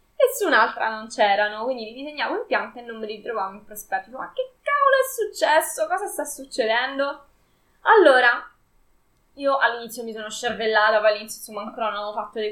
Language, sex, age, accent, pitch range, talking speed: Italian, female, 10-29, native, 205-275 Hz, 175 wpm